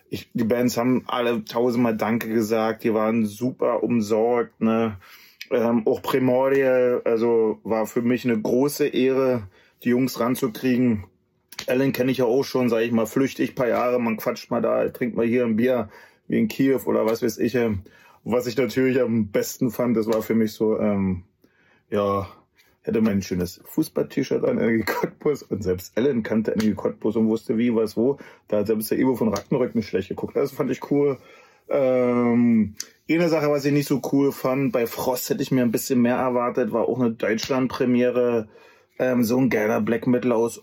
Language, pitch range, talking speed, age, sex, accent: German, 110-125 Hz, 190 wpm, 30-49, male, German